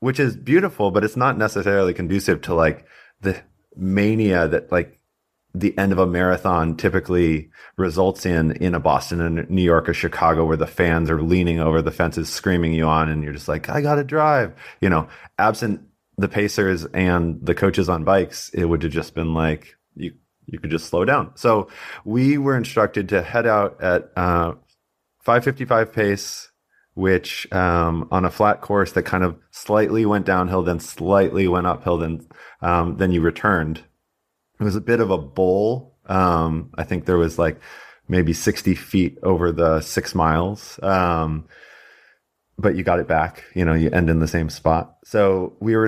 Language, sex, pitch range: English, male, 85-100 Hz